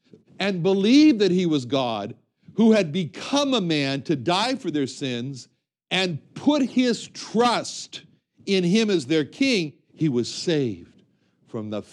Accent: American